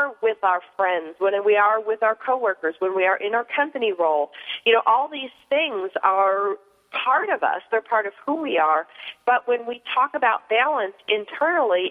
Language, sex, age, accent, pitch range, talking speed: English, female, 40-59, American, 195-260 Hz, 195 wpm